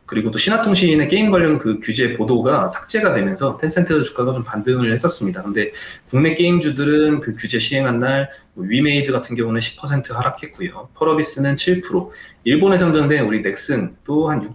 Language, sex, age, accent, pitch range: Korean, male, 20-39, native, 115-165 Hz